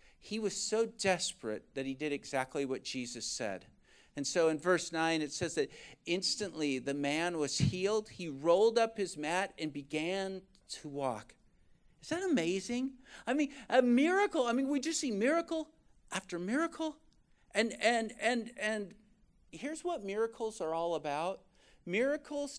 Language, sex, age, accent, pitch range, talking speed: English, male, 50-69, American, 155-230 Hz, 155 wpm